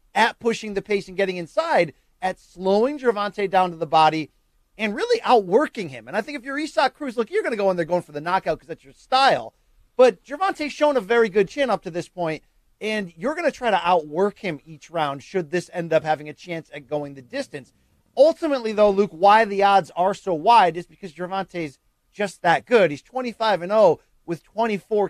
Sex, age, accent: male, 40-59, American